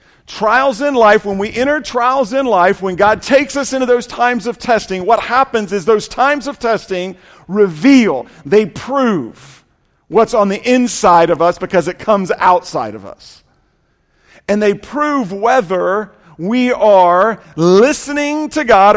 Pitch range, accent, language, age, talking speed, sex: 165-220 Hz, American, English, 50-69, 155 wpm, male